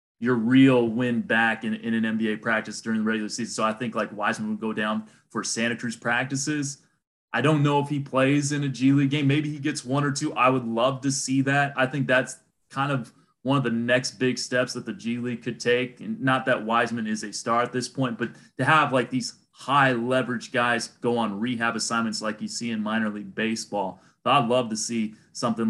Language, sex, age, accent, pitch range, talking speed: English, male, 30-49, American, 115-135 Hz, 230 wpm